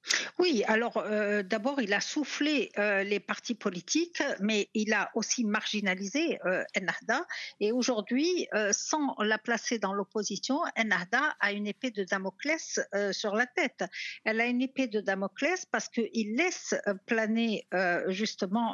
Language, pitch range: French, 200-265 Hz